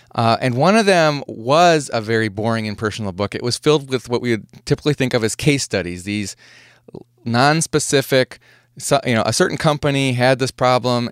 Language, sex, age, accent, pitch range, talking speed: English, male, 30-49, American, 110-140 Hz, 190 wpm